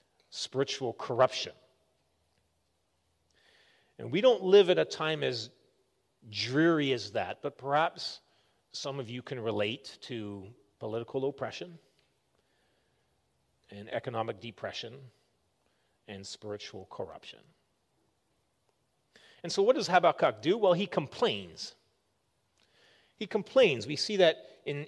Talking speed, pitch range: 105 wpm, 140-230 Hz